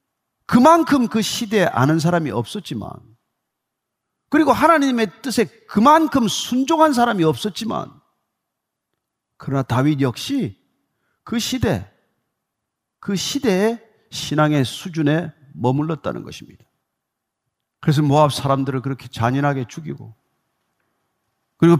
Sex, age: male, 40-59